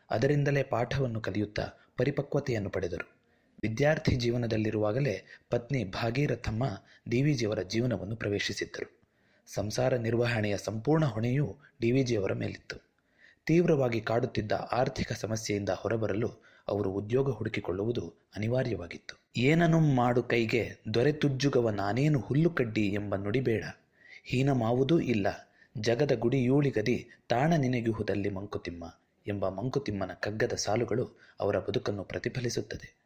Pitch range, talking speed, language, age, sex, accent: 105-135 Hz, 95 wpm, Kannada, 30-49, male, native